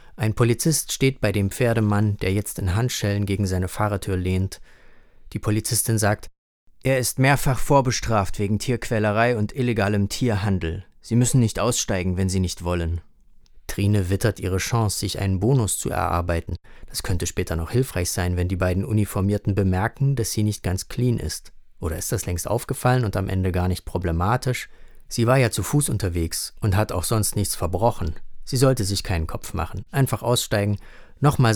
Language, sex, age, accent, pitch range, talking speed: German, male, 30-49, German, 90-115 Hz, 175 wpm